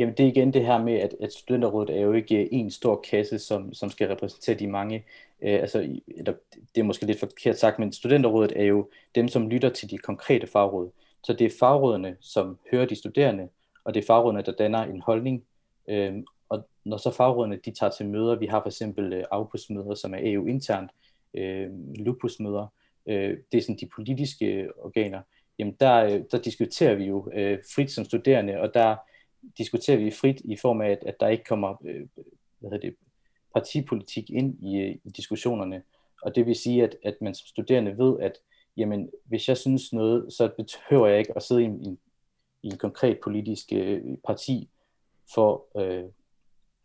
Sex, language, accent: male, Danish, native